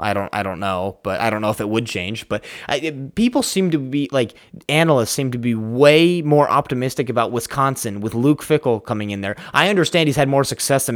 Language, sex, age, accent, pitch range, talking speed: English, male, 20-39, American, 105-135 Hz, 230 wpm